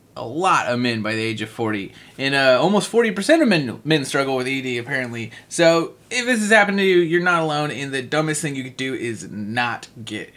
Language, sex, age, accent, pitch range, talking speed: English, male, 30-49, American, 115-165 Hz, 230 wpm